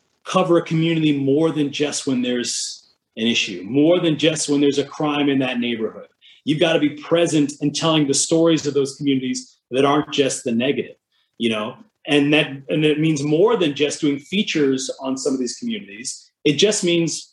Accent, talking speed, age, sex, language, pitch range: American, 195 wpm, 30-49, male, English, 135-165 Hz